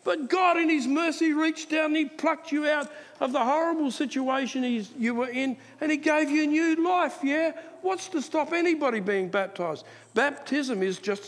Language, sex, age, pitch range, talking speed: English, male, 50-69, 175-285 Hz, 195 wpm